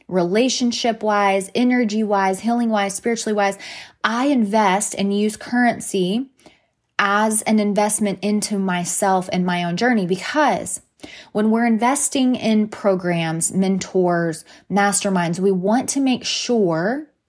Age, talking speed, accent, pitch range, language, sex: 20-39, 110 wpm, American, 185-220 Hz, English, female